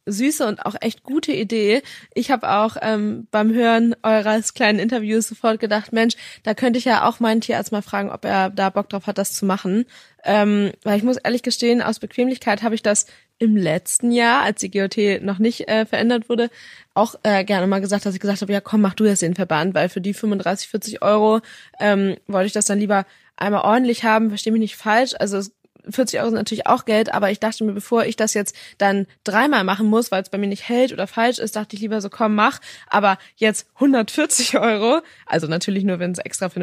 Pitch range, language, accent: 195-225 Hz, German, German